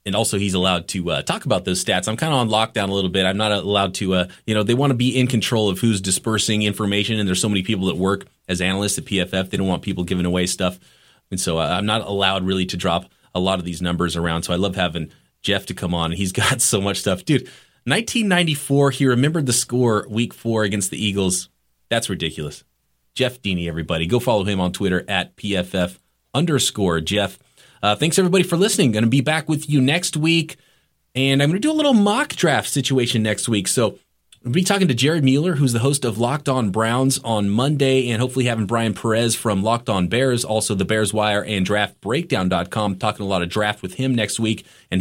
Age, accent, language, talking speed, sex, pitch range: 30-49, American, English, 230 wpm, male, 95-125 Hz